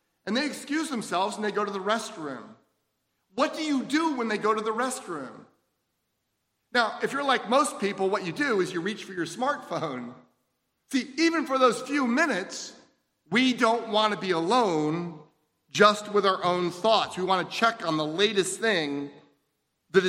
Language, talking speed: English, 180 wpm